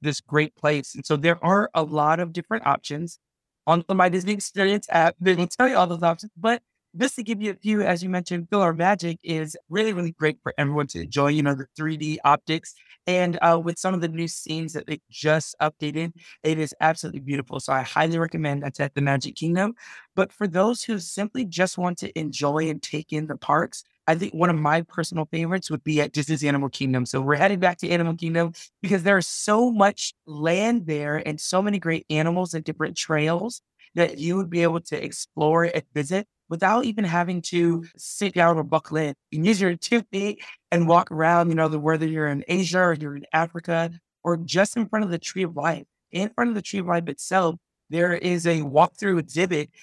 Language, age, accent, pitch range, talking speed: English, 20-39, American, 155-185 Hz, 220 wpm